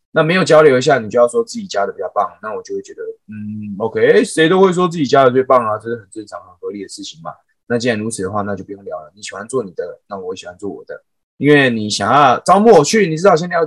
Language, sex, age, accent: Chinese, male, 20-39, native